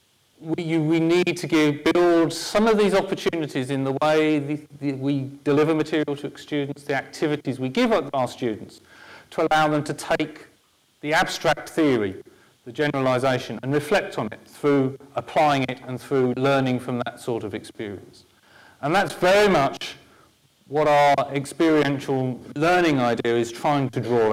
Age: 40-59